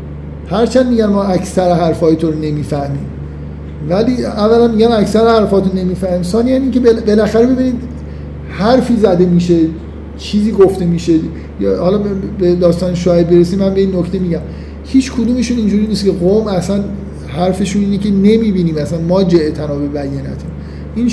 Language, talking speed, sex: Persian, 170 wpm, male